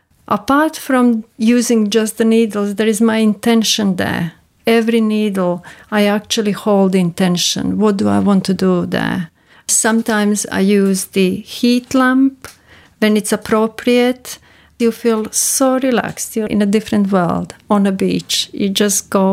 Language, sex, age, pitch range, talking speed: English, female, 40-59, 195-235 Hz, 150 wpm